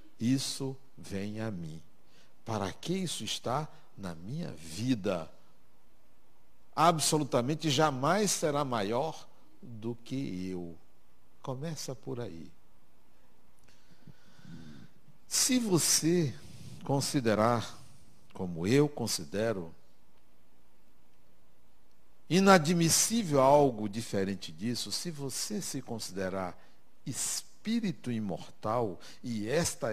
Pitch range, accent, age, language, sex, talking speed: 105-160 Hz, Brazilian, 60-79, Portuguese, male, 80 wpm